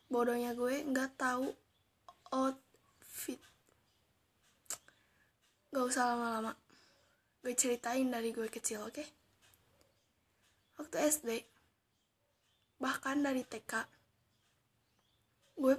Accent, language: native, Indonesian